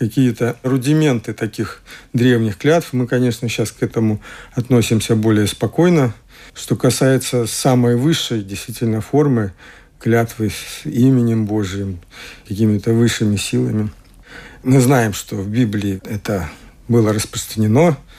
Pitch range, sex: 110-125 Hz, male